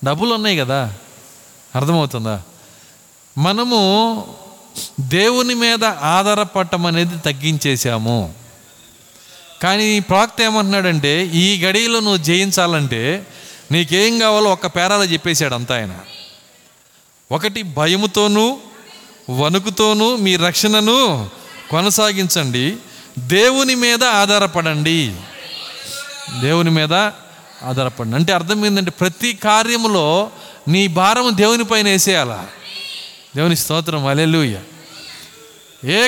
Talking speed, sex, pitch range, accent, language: 85 wpm, male, 155-205 Hz, native, Telugu